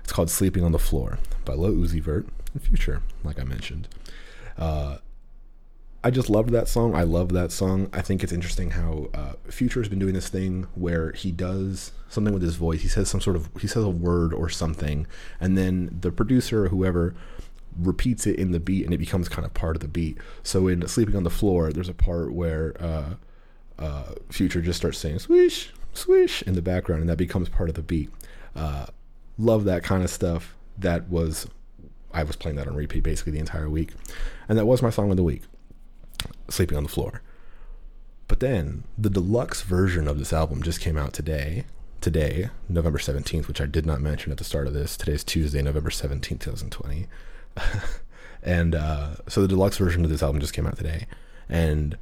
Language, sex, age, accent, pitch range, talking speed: English, male, 30-49, American, 80-95 Hz, 205 wpm